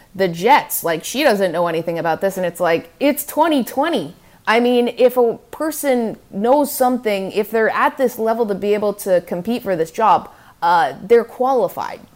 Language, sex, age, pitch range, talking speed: English, female, 30-49, 180-230 Hz, 185 wpm